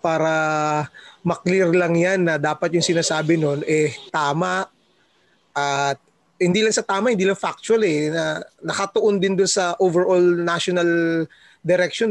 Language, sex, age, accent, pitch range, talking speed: English, male, 20-39, Filipino, 150-185 Hz, 140 wpm